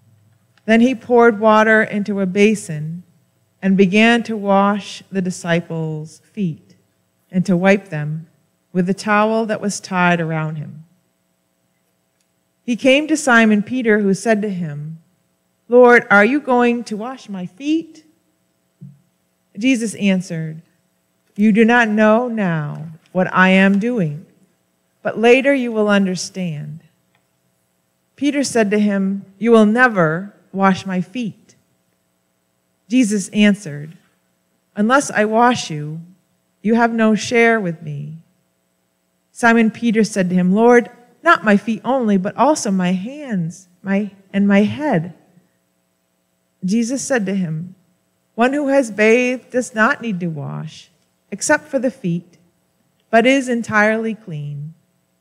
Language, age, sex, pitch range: English, 40-59, female, 155-225 Hz